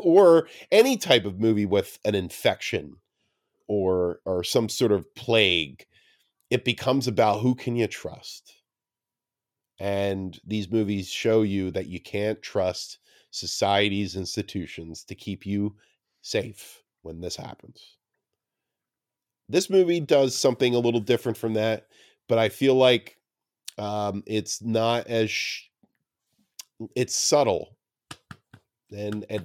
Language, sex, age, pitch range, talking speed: English, male, 40-59, 95-120 Hz, 120 wpm